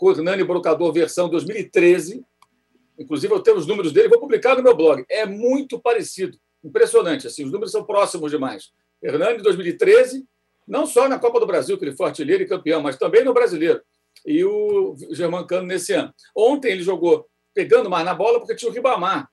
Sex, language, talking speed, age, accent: male, Portuguese, 190 wpm, 60-79, Brazilian